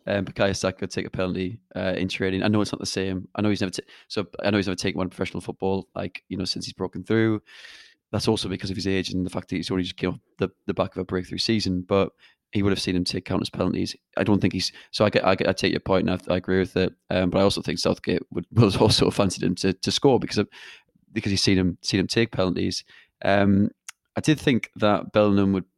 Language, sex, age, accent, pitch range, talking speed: English, male, 20-39, British, 90-105 Hz, 275 wpm